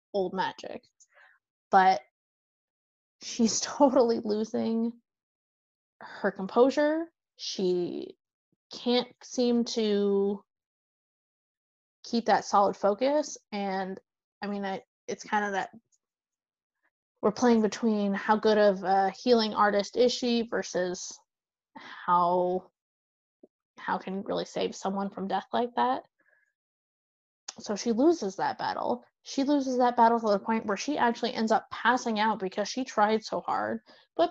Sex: female